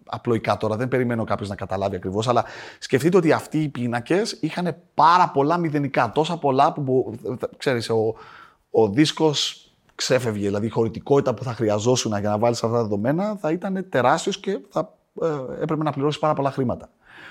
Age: 30-49